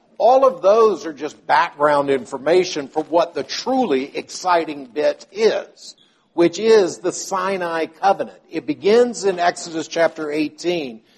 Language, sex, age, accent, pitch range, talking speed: English, male, 60-79, American, 150-220 Hz, 135 wpm